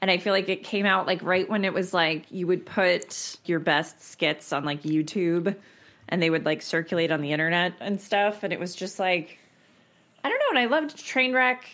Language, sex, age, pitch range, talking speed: English, female, 20-39, 165-230 Hz, 225 wpm